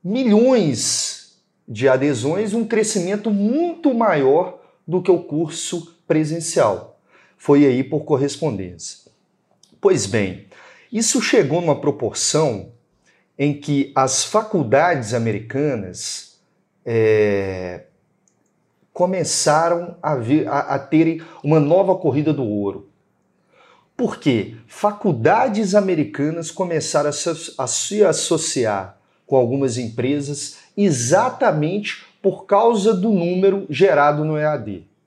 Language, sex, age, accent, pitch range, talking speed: Portuguese, male, 40-59, Brazilian, 120-180 Hz, 100 wpm